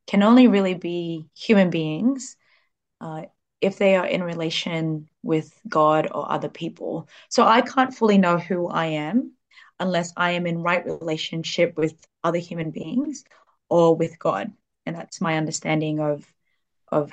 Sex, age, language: female, 20-39, English